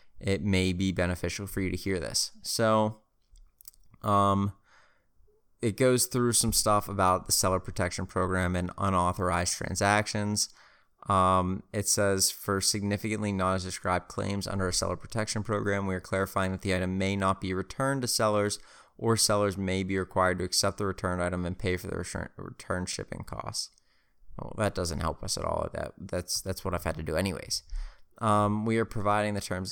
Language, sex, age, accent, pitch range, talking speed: English, male, 20-39, American, 95-110 Hz, 180 wpm